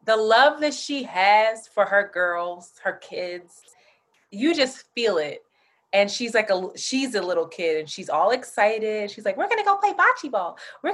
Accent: American